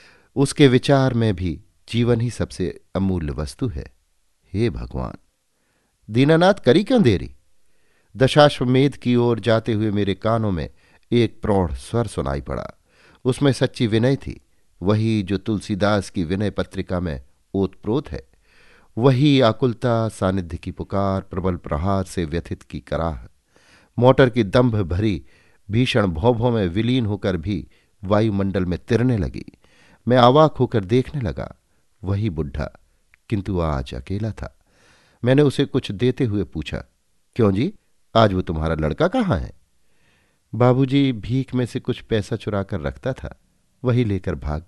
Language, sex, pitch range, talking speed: Hindi, male, 90-125 Hz, 140 wpm